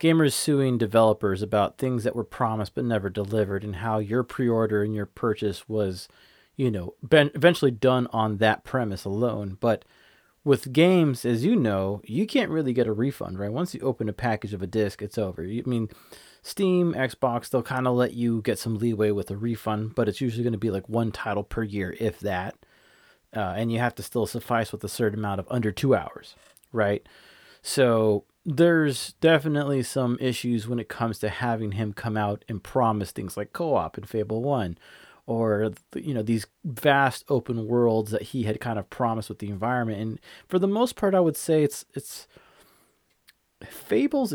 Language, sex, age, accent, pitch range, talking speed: English, male, 30-49, American, 105-130 Hz, 190 wpm